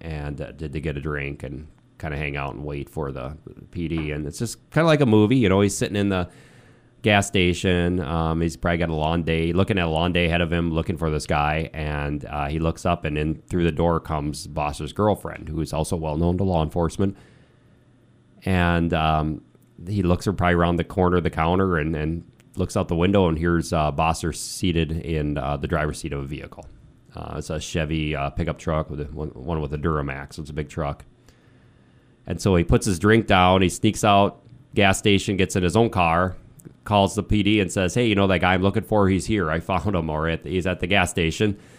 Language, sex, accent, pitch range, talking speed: English, male, American, 80-100 Hz, 235 wpm